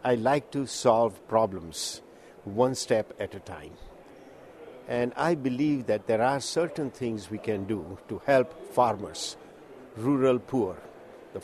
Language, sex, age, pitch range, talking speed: English, male, 60-79, 115-140 Hz, 140 wpm